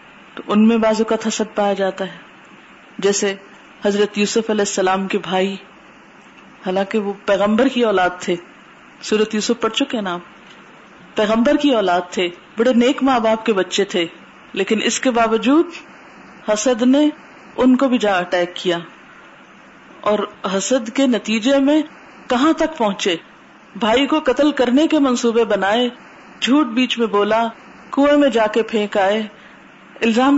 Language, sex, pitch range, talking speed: Urdu, female, 205-270 Hz, 125 wpm